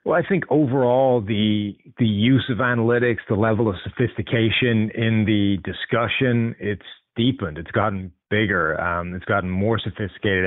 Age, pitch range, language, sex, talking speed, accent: 30-49, 100-120 Hz, English, male, 150 wpm, American